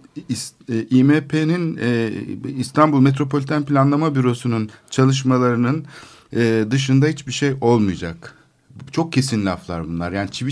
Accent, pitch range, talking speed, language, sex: native, 100-140 Hz, 110 wpm, Turkish, male